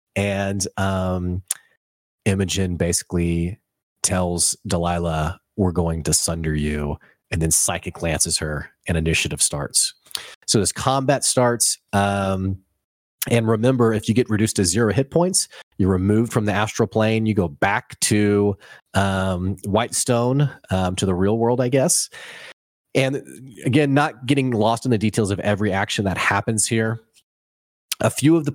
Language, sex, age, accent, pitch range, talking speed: English, male, 30-49, American, 90-110 Hz, 145 wpm